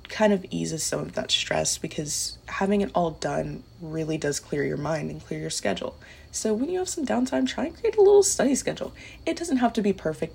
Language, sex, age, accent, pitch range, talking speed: English, female, 20-39, American, 155-195 Hz, 230 wpm